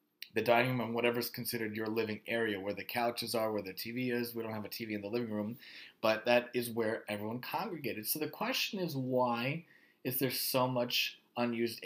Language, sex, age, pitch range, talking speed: English, male, 30-49, 120-145 Hz, 220 wpm